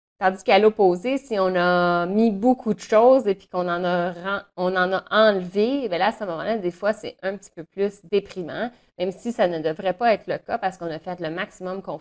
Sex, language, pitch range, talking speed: female, French, 180-225 Hz, 240 wpm